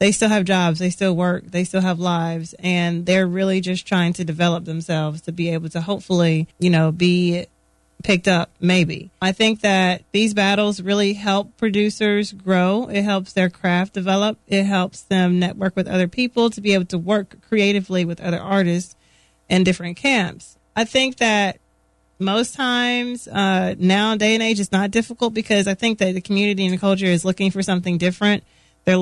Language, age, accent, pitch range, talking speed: English, 30-49, American, 175-195 Hz, 190 wpm